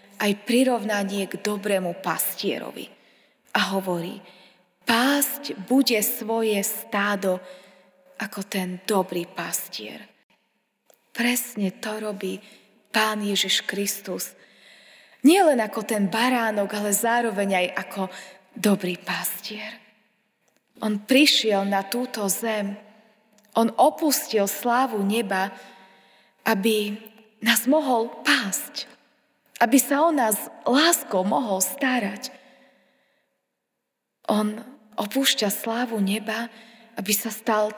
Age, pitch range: 20-39, 200-245 Hz